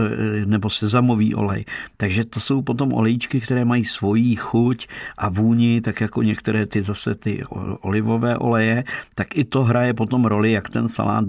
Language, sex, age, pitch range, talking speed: Czech, male, 50-69, 105-115 Hz, 165 wpm